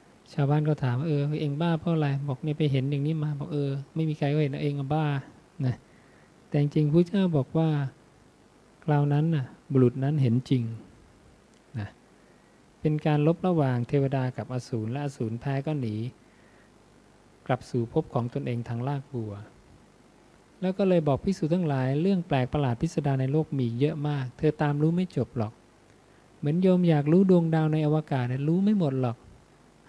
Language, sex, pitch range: English, male, 125-160 Hz